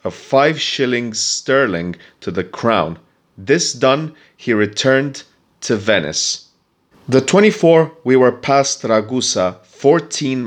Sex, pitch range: male, 105-135 Hz